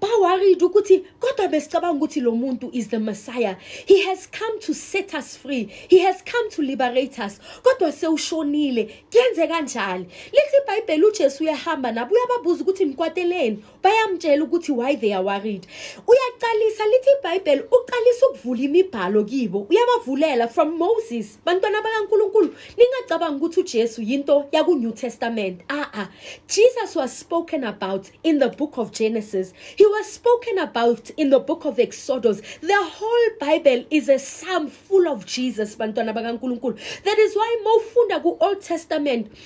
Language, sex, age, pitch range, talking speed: English, female, 30-49, 255-415 Hz, 165 wpm